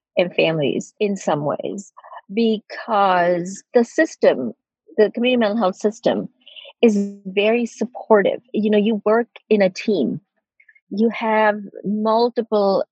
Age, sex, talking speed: 40-59, female, 120 wpm